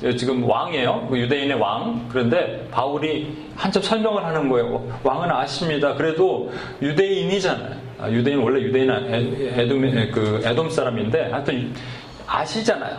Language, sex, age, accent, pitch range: Korean, male, 40-59, native, 125-155 Hz